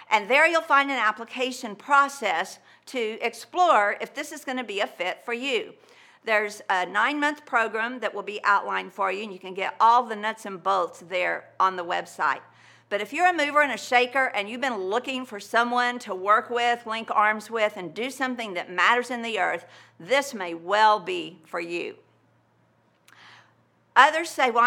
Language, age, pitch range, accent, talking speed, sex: English, 50-69, 210-255 Hz, American, 190 wpm, female